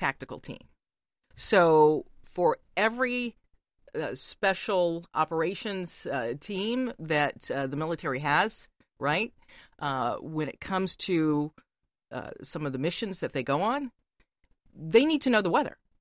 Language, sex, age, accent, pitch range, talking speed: English, female, 40-59, American, 140-185 Hz, 135 wpm